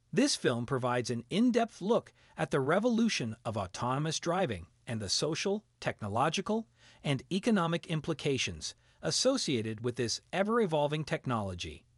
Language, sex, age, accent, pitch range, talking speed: Italian, male, 40-59, American, 120-200 Hz, 120 wpm